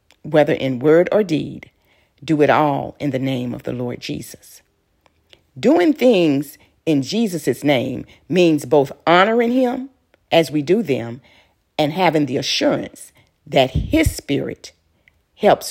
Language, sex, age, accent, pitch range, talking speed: English, female, 50-69, American, 135-185 Hz, 140 wpm